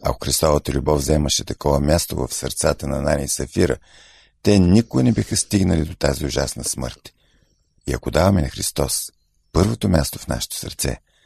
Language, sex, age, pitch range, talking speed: Bulgarian, male, 50-69, 75-95 Hz, 165 wpm